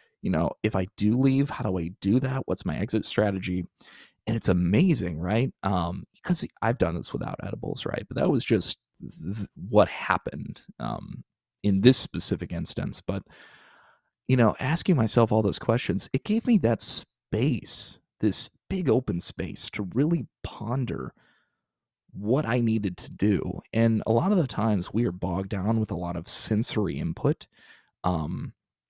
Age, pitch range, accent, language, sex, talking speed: 30-49, 95-130 Hz, American, English, male, 165 wpm